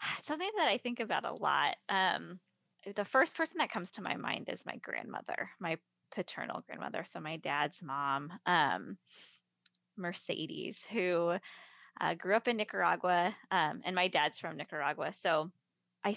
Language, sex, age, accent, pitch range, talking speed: English, female, 20-39, American, 155-200 Hz, 155 wpm